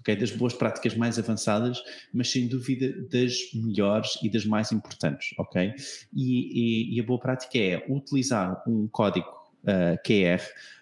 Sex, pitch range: male, 110-135 Hz